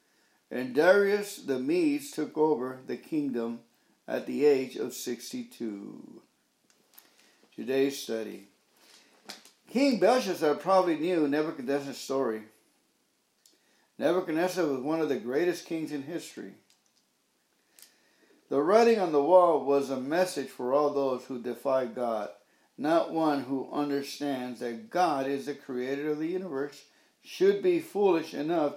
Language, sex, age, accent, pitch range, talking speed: English, male, 60-79, American, 140-185 Hz, 125 wpm